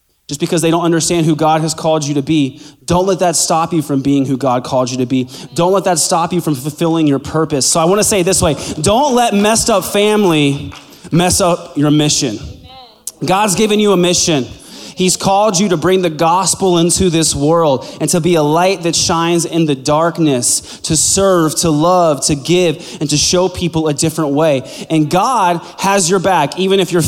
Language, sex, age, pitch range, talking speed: English, male, 20-39, 155-200 Hz, 215 wpm